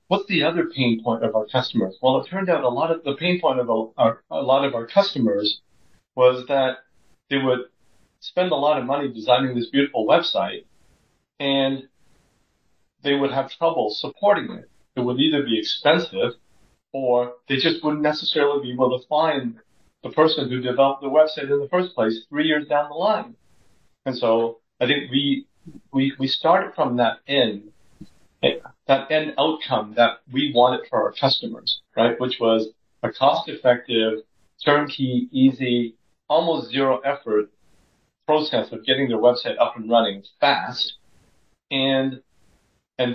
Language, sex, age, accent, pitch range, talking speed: English, male, 50-69, American, 115-145 Hz, 160 wpm